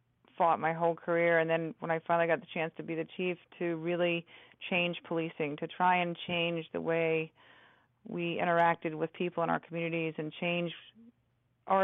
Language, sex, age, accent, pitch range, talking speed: English, female, 40-59, American, 165-180 Hz, 180 wpm